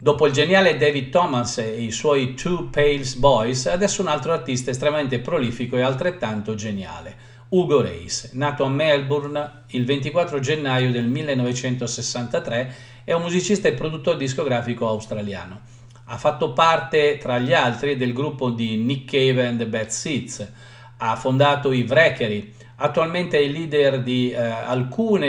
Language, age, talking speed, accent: Italian, 50-69, 150 wpm, native